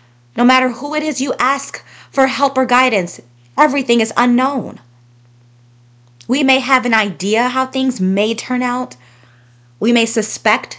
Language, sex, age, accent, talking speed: English, female, 20-39, American, 150 wpm